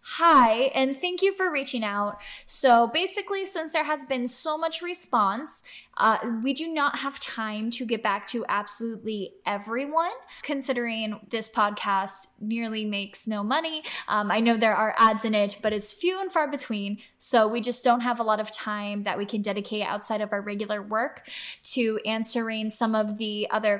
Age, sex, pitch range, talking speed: 10-29, female, 210-260 Hz, 185 wpm